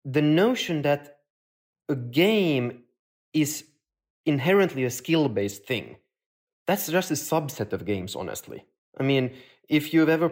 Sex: male